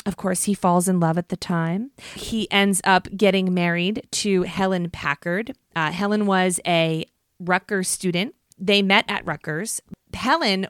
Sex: female